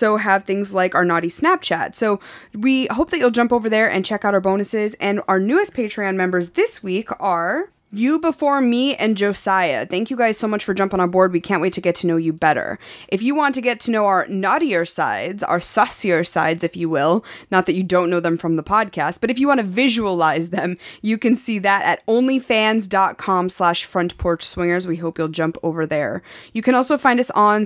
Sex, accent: female, American